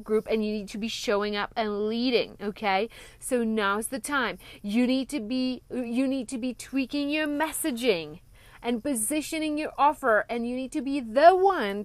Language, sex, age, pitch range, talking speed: English, female, 30-49, 220-280 Hz, 185 wpm